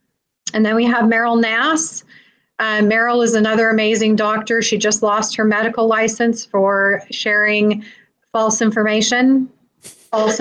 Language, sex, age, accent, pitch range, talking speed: English, female, 30-49, American, 205-225 Hz, 135 wpm